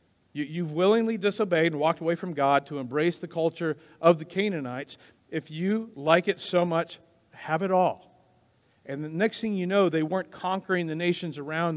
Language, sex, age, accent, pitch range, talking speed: English, male, 50-69, American, 135-185 Hz, 185 wpm